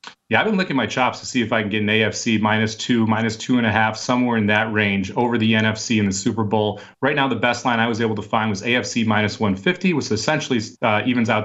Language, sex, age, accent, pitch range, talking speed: English, male, 30-49, American, 110-140 Hz, 275 wpm